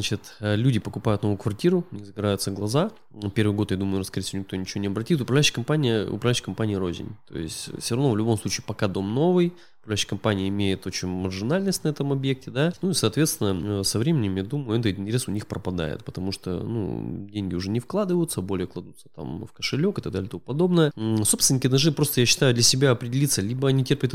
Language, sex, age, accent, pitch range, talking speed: Russian, male, 20-39, native, 100-130 Hz, 205 wpm